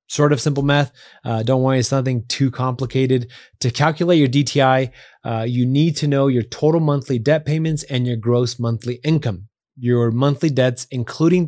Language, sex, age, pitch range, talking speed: English, male, 30-49, 115-145 Hz, 180 wpm